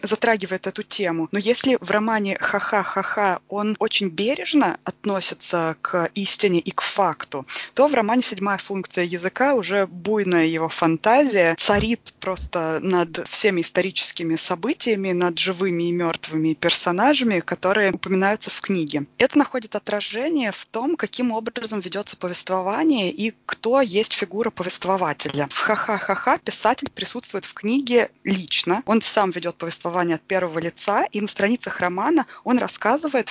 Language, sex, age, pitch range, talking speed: Russian, female, 20-39, 175-215 Hz, 140 wpm